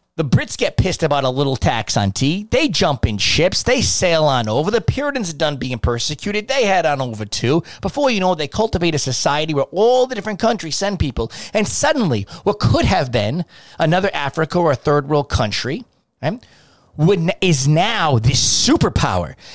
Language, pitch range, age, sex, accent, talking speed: English, 120-170 Hz, 30-49, male, American, 185 wpm